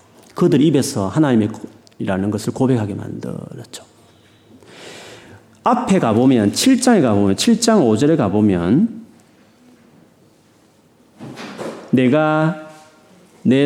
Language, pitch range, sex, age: Korean, 105-165 Hz, male, 40-59